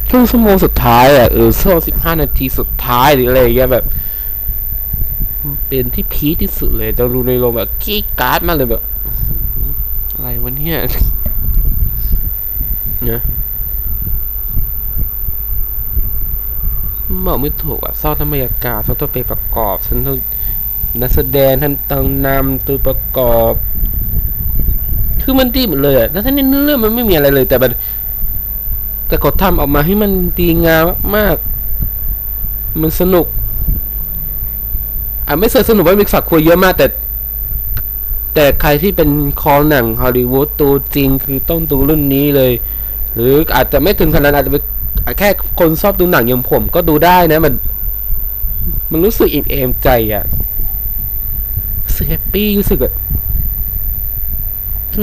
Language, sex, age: Thai, male, 20-39